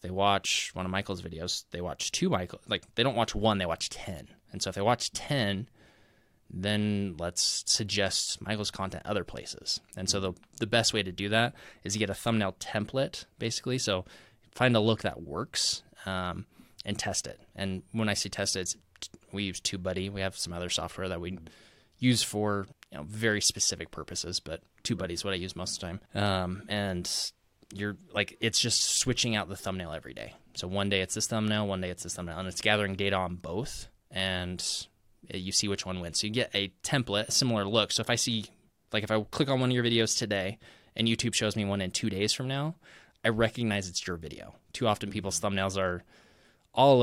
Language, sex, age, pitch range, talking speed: English, male, 20-39, 95-115 Hz, 215 wpm